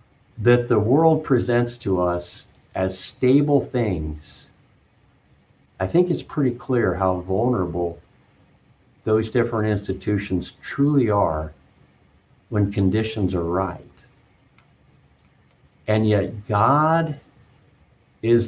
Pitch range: 95-130 Hz